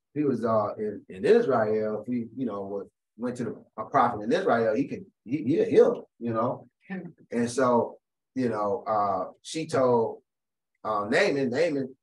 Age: 30-49